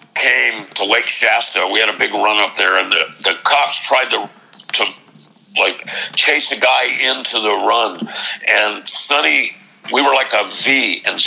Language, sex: English, male